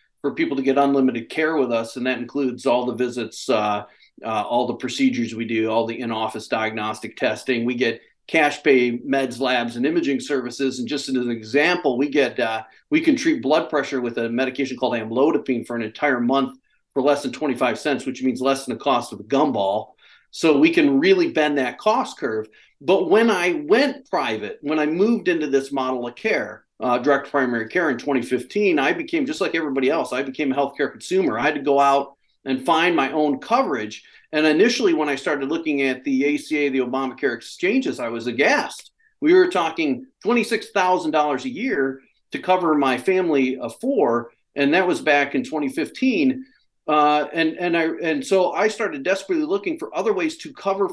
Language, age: English, 40-59